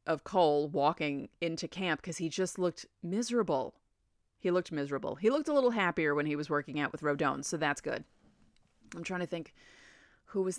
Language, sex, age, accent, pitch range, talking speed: English, female, 30-49, American, 155-210 Hz, 195 wpm